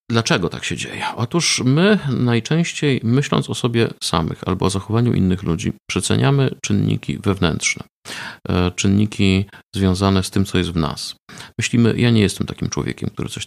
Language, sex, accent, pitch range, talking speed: Polish, male, native, 85-120 Hz, 155 wpm